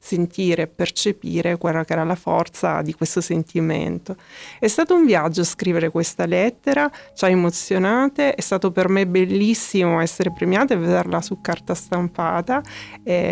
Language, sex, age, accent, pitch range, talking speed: Italian, female, 30-49, native, 170-205 Hz, 155 wpm